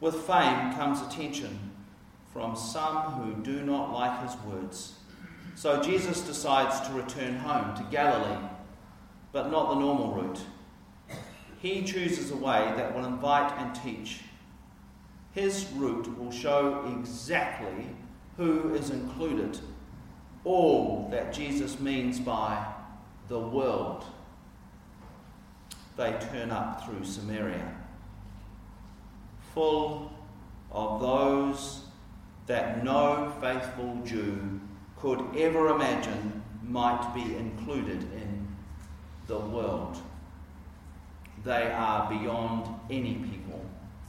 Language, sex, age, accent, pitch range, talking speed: English, male, 40-59, Australian, 100-140 Hz, 100 wpm